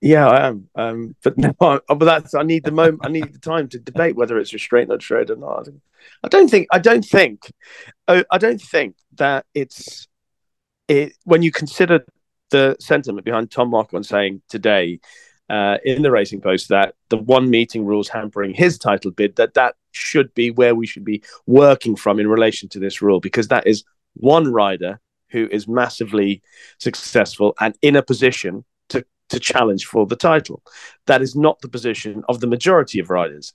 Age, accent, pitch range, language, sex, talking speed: 30-49, British, 105-140 Hz, English, male, 190 wpm